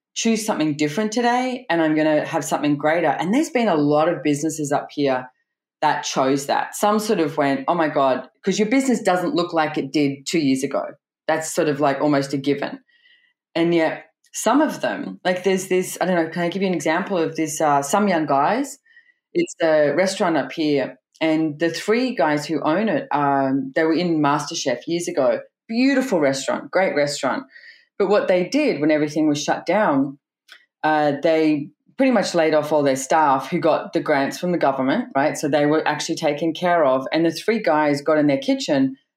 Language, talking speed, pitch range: English, 205 wpm, 145-195 Hz